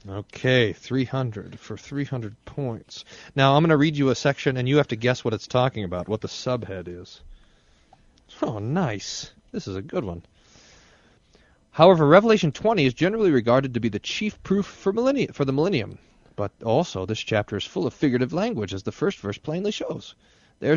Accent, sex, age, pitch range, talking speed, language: American, male, 40-59, 105-140 Hz, 185 wpm, English